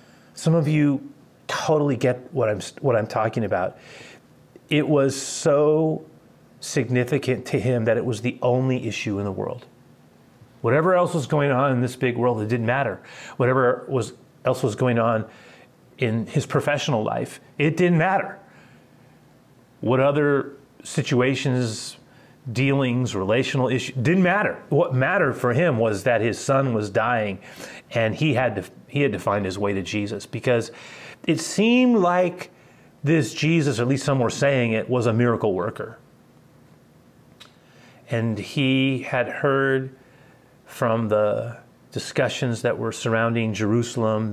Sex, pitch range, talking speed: male, 120-140 Hz, 145 wpm